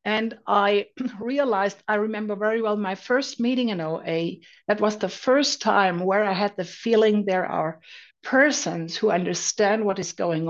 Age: 60-79